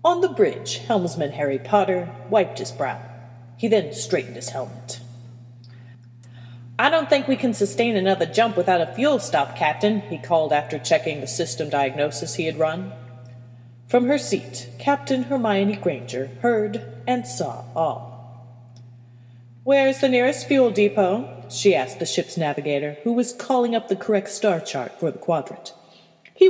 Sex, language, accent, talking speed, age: female, English, American, 160 wpm, 30-49